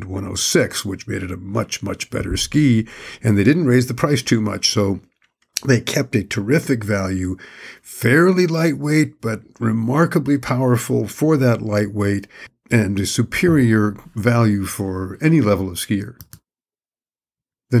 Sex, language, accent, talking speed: male, English, American, 140 wpm